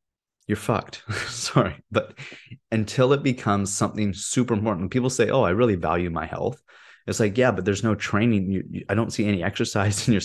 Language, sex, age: English, male, 20-39